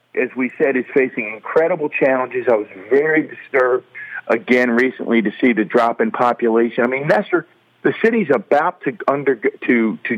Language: English